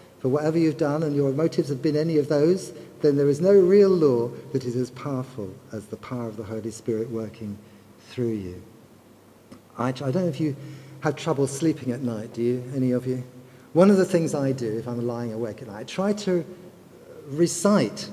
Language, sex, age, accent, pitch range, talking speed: English, male, 50-69, British, 125-175 Hz, 210 wpm